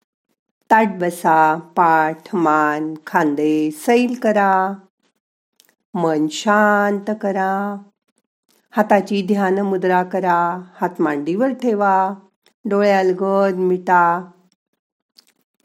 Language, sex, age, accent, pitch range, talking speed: Marathi, female, 50-69, native, 175-230 Hz, 75 wpm